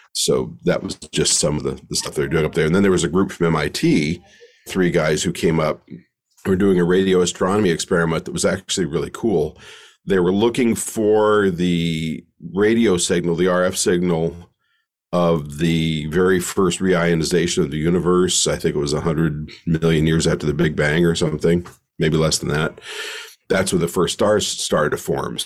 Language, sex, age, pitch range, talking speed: English, male, 50-69, 85-105 Hz, 190 wpm